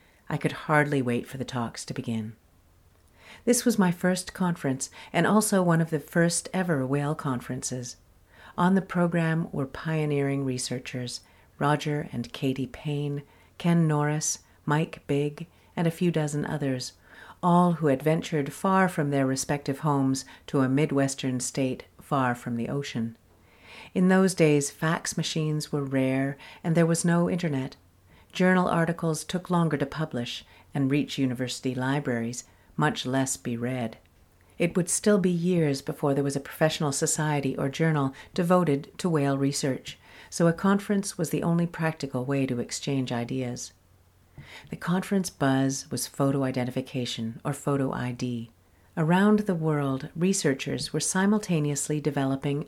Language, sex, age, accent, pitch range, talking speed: English, female, 50-69, American, 125-165 Hz, 145 wpm